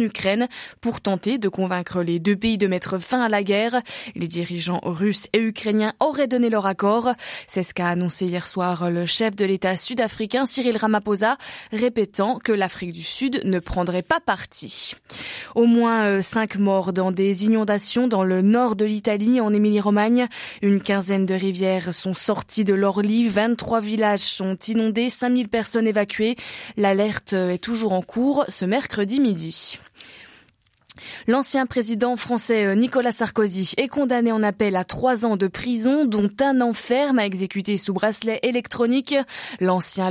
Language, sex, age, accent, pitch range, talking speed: French, female, 20-39, French, 195-245 Hz, 160 wpm